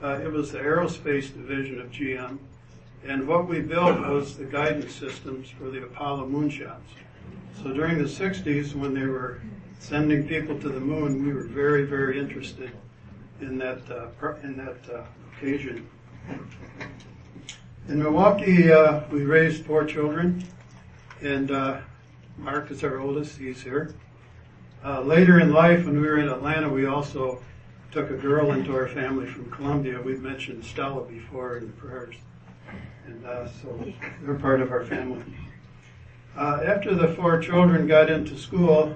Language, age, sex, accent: English, 60-79, male, American